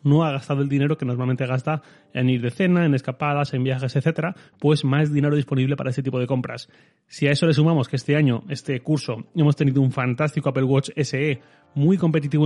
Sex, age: male, 30-49